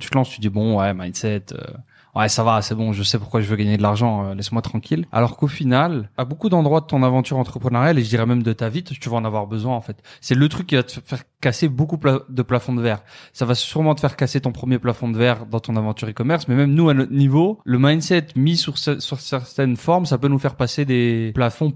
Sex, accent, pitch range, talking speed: male, French, 115-140 Hz, 275 wpm